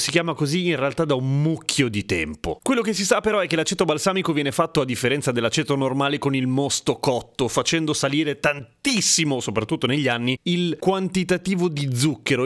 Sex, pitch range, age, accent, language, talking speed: male, 120-170 Hz, 30-49, native, Italian, 190 wpm